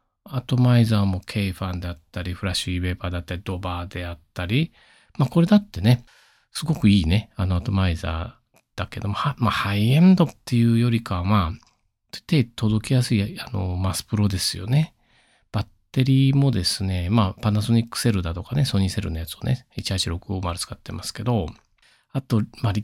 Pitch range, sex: 95-130 Hz, male